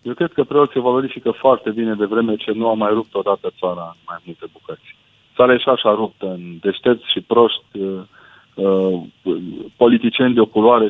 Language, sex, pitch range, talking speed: Romanian, male, 105-120 Hz, 175 wpm